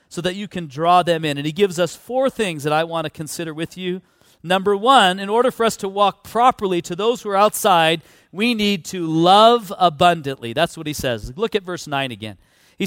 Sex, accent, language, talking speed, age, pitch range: male, American, English, 230 wpm, 40-59, 165-220 Hz